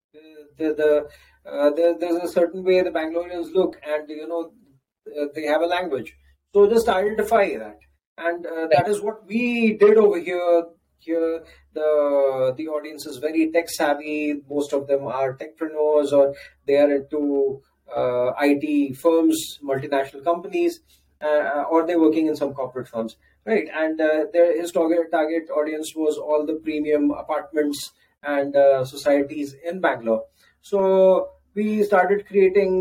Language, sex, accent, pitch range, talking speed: Hindi, male, native, 140-170 Hz, 155 wpm